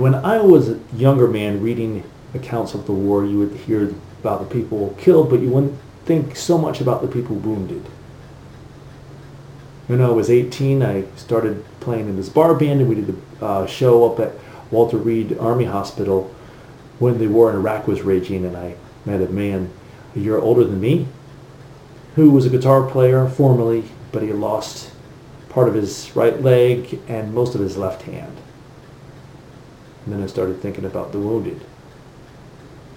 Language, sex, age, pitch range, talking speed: English, male, 40-59, 110-135 Hz, 175 wpm